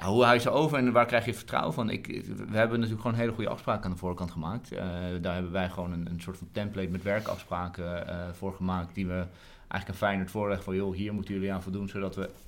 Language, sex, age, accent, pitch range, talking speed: English, male, 30-49, Dutch, 90-105 Hz, 255 wpm